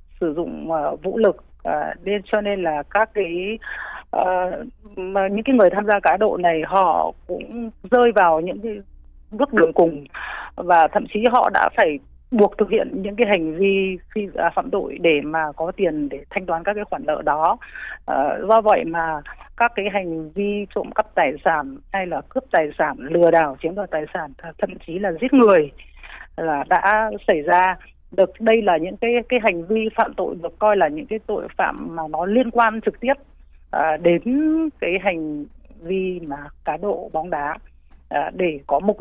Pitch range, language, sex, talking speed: 165-215 Hz, Vietnamese, female, 200 wpm